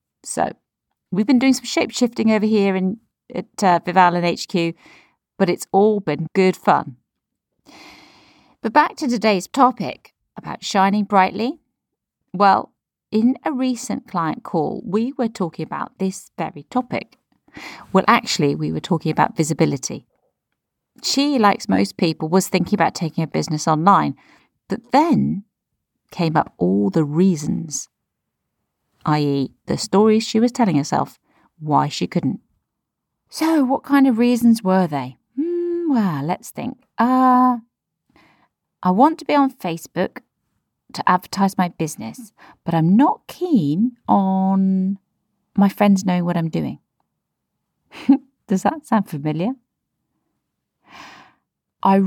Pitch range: 175-240 Hz